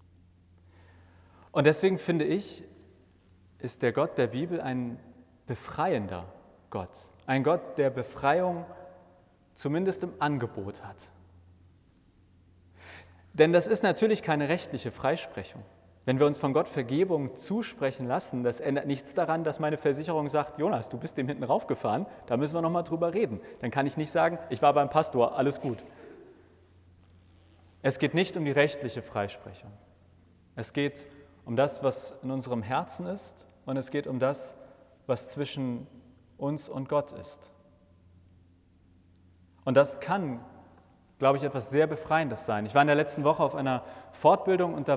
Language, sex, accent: German, male, German